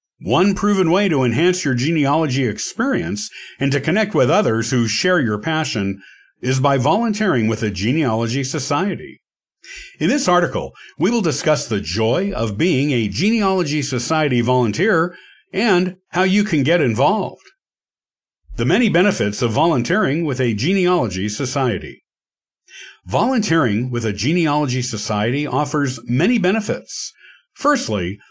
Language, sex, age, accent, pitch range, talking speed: English, male, 50-69, American, 120-180 Hz, 130 wpm